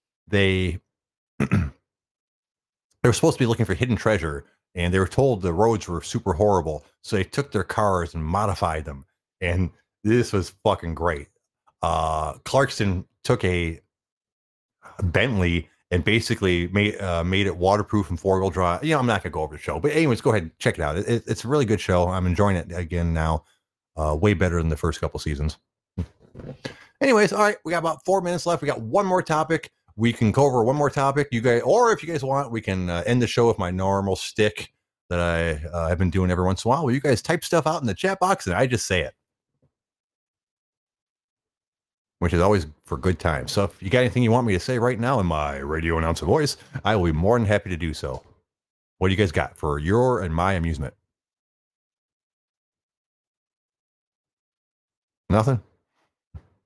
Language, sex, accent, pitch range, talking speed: English, male, American, 85-120 Hz, 205 wpm